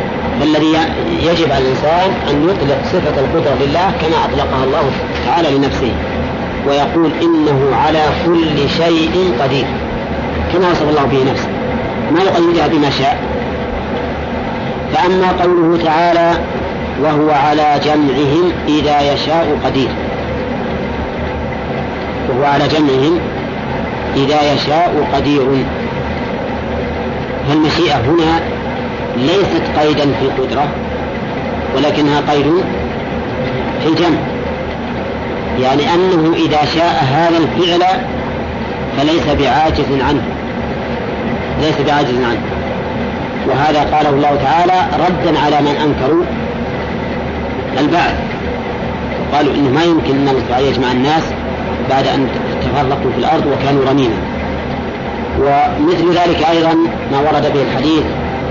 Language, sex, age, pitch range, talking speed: Arabic, female, 40-59, 140-165 Hz, 95 wpm